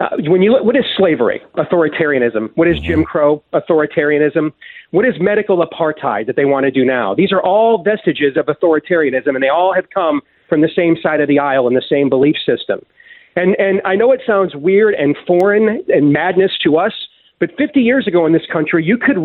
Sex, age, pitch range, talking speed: male, 40-59, 155-210 Hz, 210 wpm